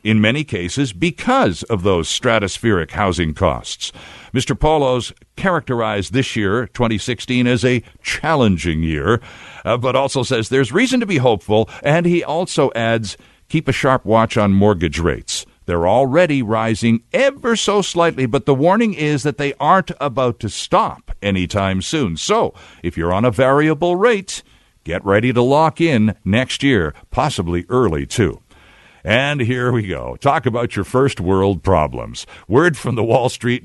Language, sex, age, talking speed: English, male, 60-79, 160 wpm